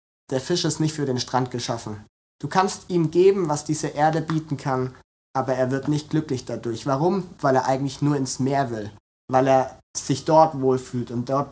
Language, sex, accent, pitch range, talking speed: German, male, German, 130-160 Hz, 200 wpm